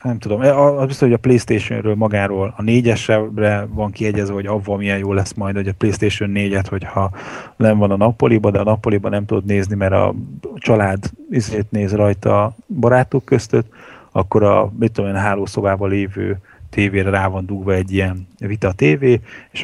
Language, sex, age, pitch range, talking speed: Hungarian, male, 30-49, 95-110 Hz, 175 wpm